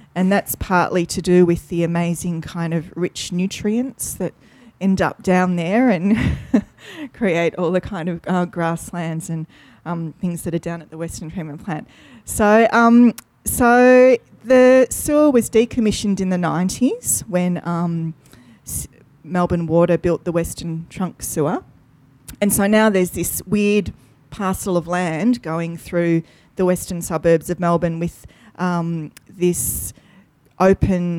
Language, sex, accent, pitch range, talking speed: English, female, Australian, 165-195 Hz, 145 wpm